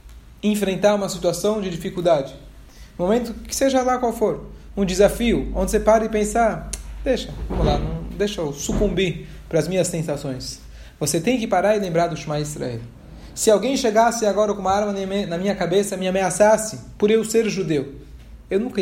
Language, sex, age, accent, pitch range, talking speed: Portuguese, male, 20-39, Brazilian, 145-205 Hz, 180 wpm